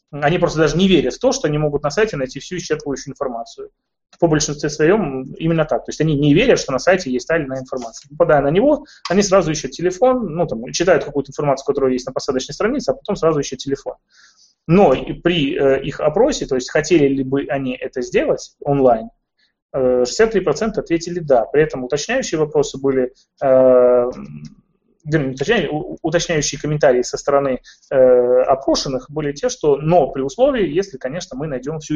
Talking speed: 175 wpm